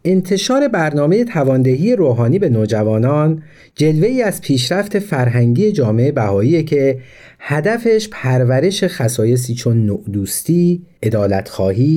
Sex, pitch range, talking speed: male, 115-160 Hz, 95 wpm